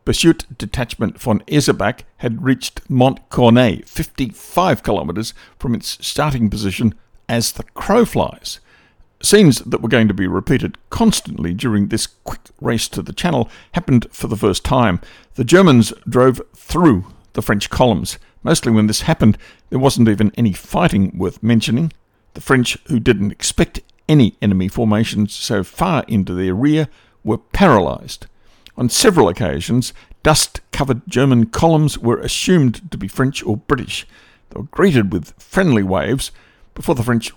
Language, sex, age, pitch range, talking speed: English, male, 60-79, 105-130 Hz, 150 wpm